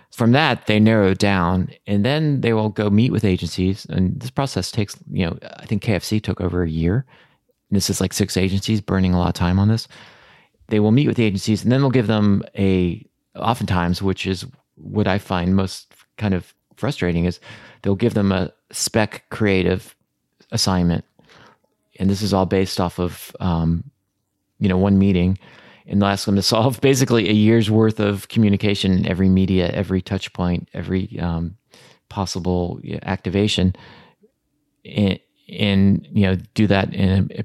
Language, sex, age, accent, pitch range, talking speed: English, male, 30-49, American, 95-110 Hz, 180 wpm